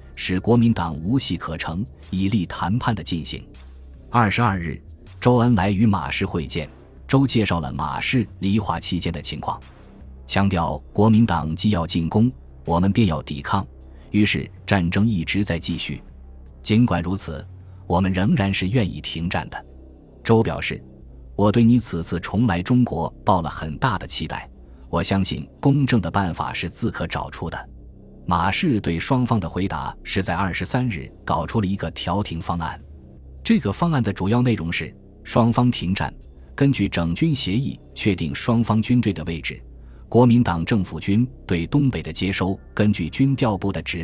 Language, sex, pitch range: Chinese, male, 80-110 Hz